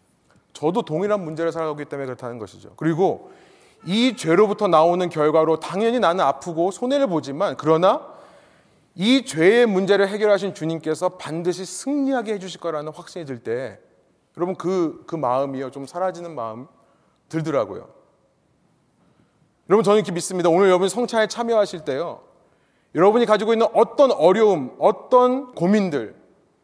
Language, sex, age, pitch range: Korean, male, 30-49, 155-210 Hz